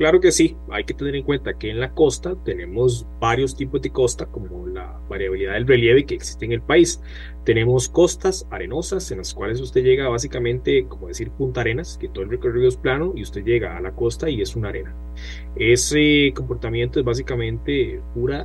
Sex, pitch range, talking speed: male, 105-145 Hz, 200 wpm